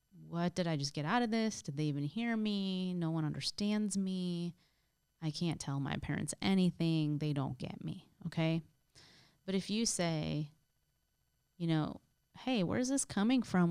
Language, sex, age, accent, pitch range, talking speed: English, female, 20-39, American, 160-205 Hz, 175 wpm